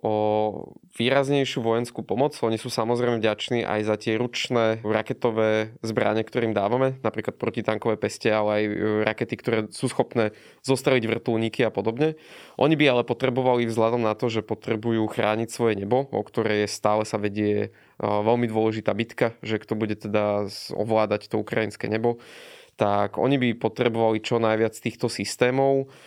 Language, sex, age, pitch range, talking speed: Slovak, male, 20-39, 105-120 Hz, 150 wpm